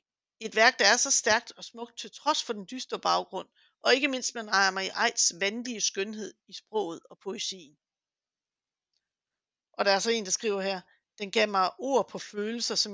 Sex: female